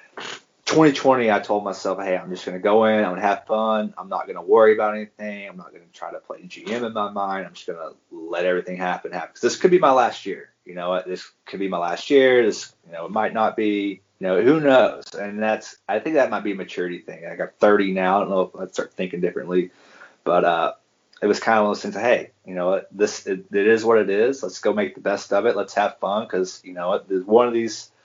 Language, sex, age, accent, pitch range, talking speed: English, male, 20-39, American, 90-110 Hz, 260 wpm